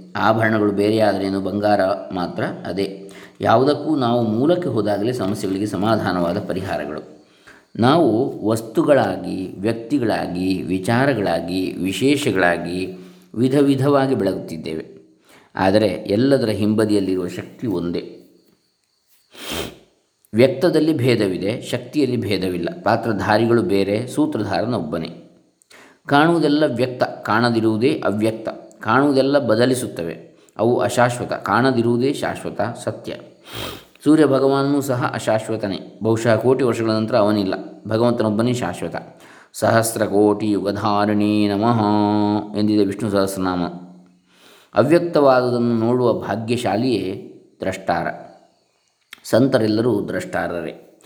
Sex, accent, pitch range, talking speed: male, native, 100-130 Hz, 80 wpm